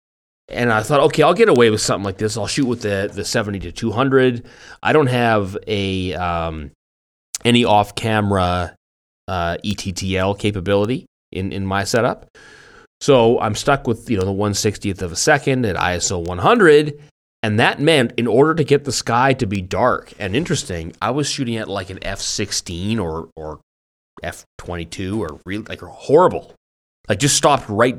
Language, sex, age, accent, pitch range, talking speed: English, male, 30-49, American, 90-115 Hz, 170 wpm